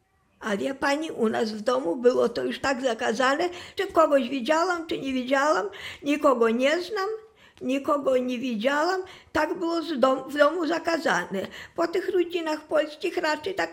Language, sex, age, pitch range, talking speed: Polish, female, 50-69, 240-320 Hz, 155 wpm